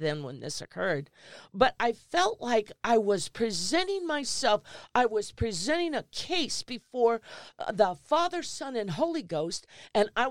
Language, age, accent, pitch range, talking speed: English, 50-69, American, 180-260 Hz, 150 wpm